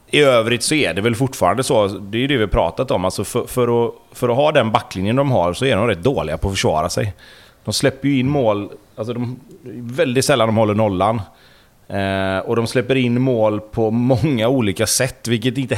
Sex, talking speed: male, 225 wpm